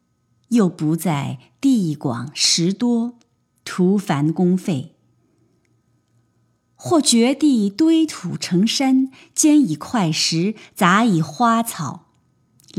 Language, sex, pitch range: Chinese, female, 155-245 Hz